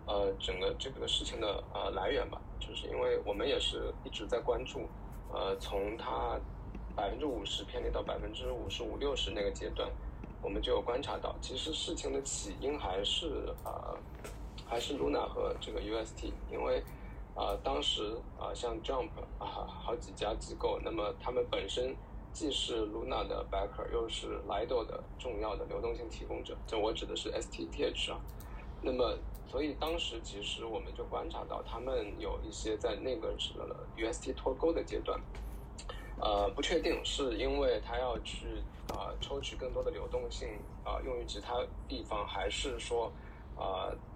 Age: 20-39